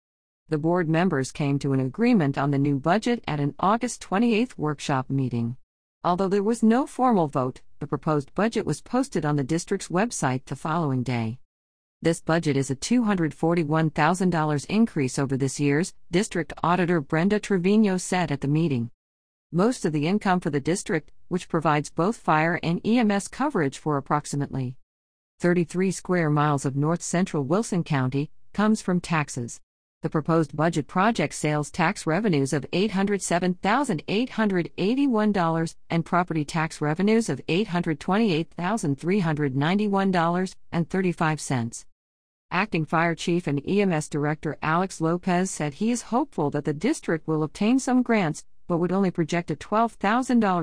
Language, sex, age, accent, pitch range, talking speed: English, female, 50-69, American, 145-195 Hz, 140 wpm